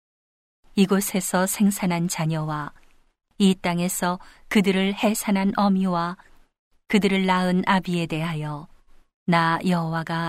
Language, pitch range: Korean, 165-195 Hz